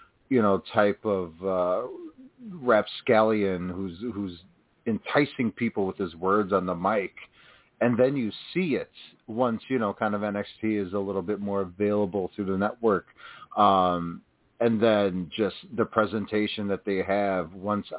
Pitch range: 90-110 Hz